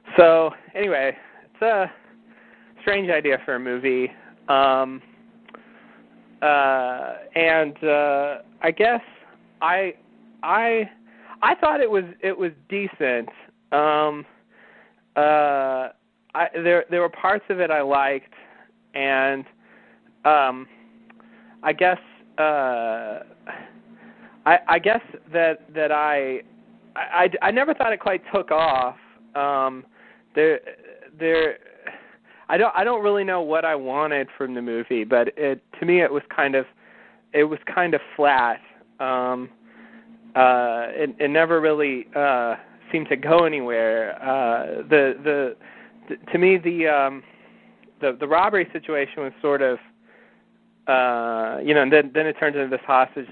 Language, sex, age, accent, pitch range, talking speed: English, male, 30-49, American, 135-200 Hz, 135 wpm